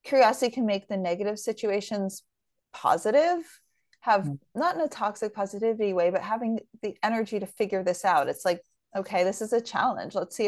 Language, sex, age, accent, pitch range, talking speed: English, female, 30-49, American, 180-225 Hz, 180 wpm